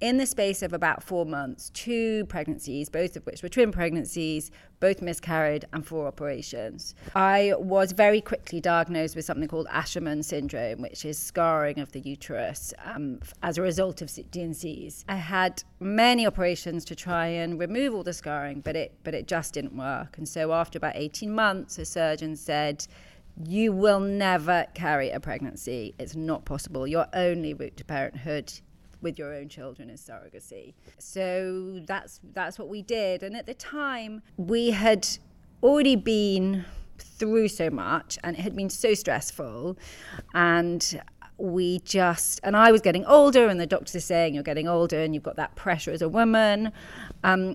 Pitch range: 160-200 Hz